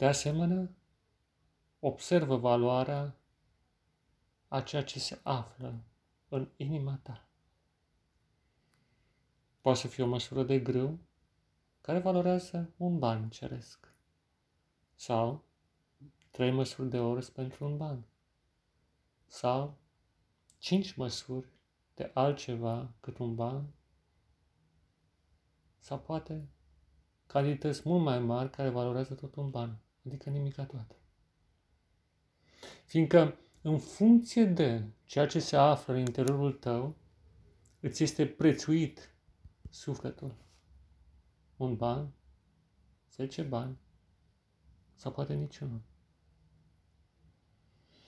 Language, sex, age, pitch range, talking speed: Romanian, male, 40-59, 85-140 Hz, 95 wpm